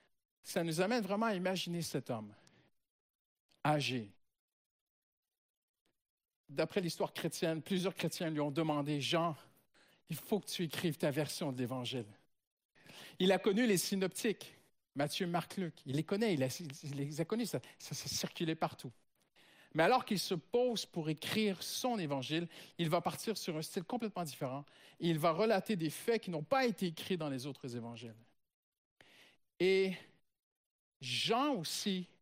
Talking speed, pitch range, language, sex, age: 155 wpm, 145-190 Hz, French, male, 50-69